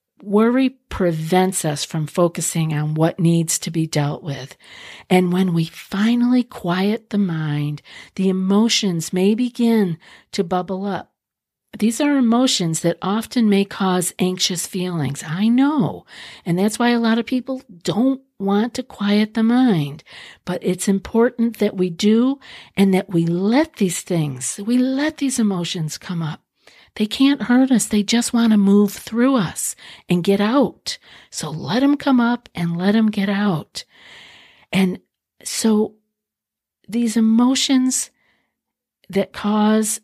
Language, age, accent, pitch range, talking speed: English, 50-69, American, 175-235 Hz, 145 wpm